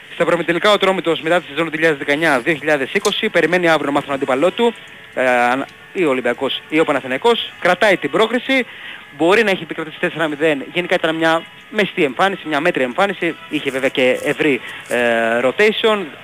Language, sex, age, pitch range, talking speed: Greek, male, 20-39, 130-175 Hz, 155 wpm